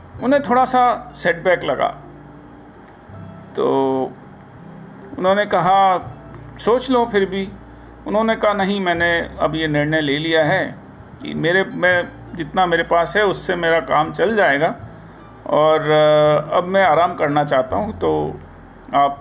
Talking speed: 135 wpm